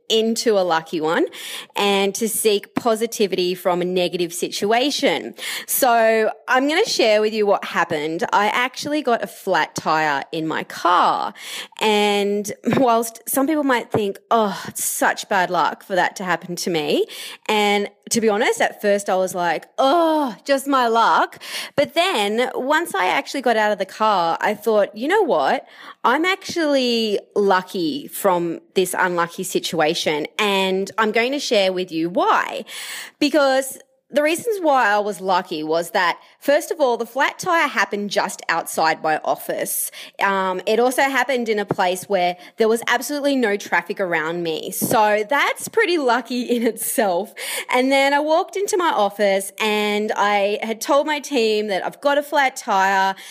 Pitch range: 195-280 Hz